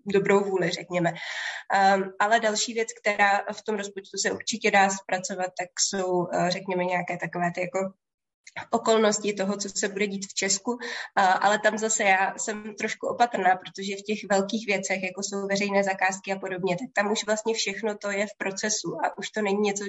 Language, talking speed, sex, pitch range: Czech, 185 wpm, female, 185-205 Hz